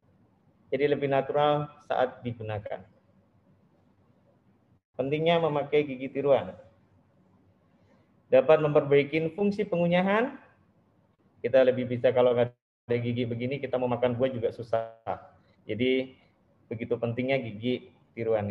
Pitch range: 120-155 Hz